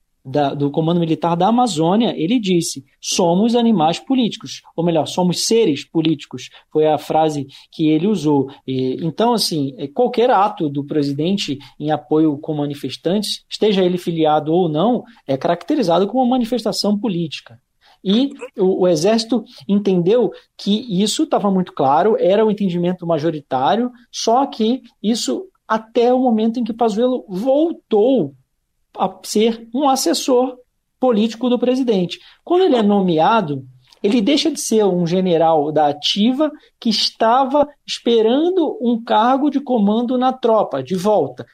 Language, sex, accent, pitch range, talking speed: Portuguese, male, Brazilian, 160-240 Hz, 135 wpm